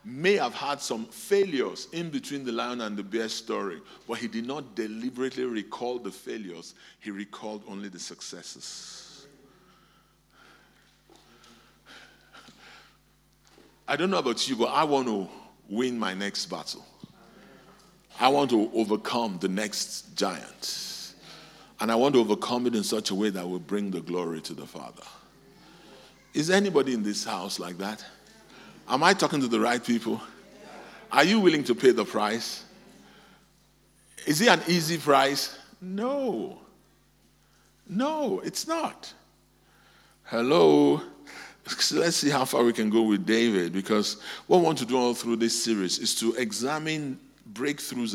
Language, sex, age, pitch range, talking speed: English, male, 50-69, 100-135 Hz, 150 wpm